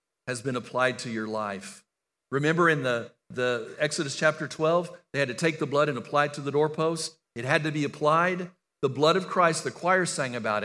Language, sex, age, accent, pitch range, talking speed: English, male, 50-69, American, 130-170 Hz, 215 wpm